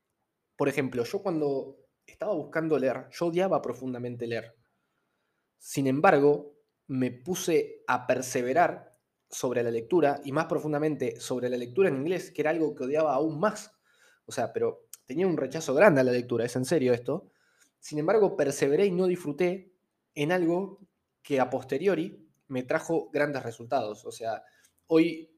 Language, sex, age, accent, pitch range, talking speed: Spanish, male, 20-39, Argentinian, 125-160 Hz, 160 wpm